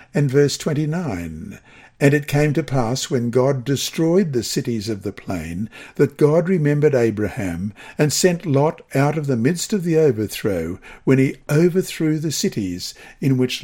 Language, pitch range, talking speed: English, 105-155 Hz, 165 wpm